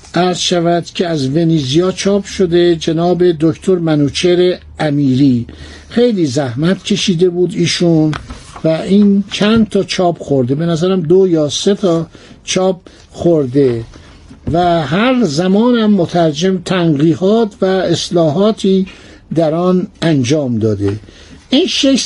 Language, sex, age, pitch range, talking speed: Persian, male, 60-79, 165-215 Hz, 115 wpm